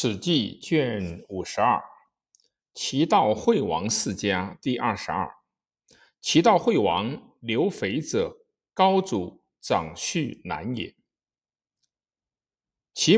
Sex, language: male, Chinese